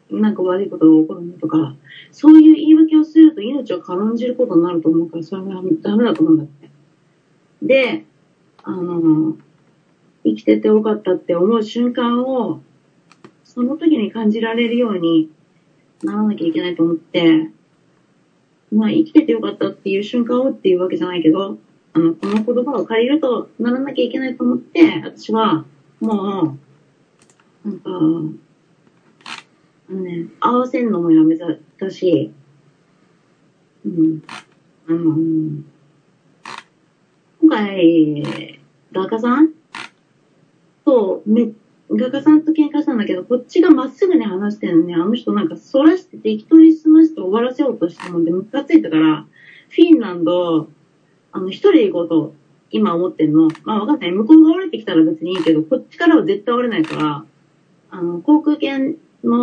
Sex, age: female, 30-49